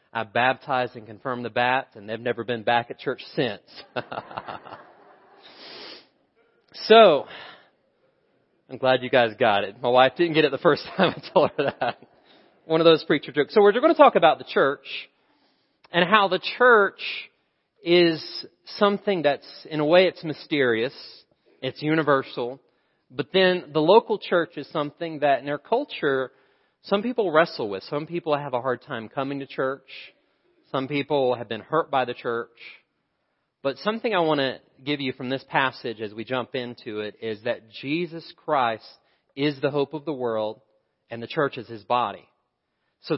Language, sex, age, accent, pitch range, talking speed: English, male, 40-59, American, 125-160 Hz, 170 wpm